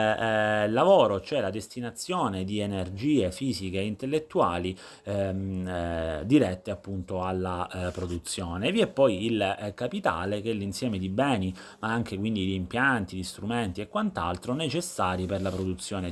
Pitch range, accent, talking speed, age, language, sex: 90-110 Hz, native, 155 wpm, 30-49, Italian, male